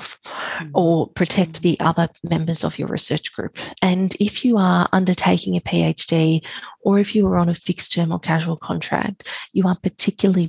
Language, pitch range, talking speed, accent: English, 155-180 Hz, 170 wpm, Australian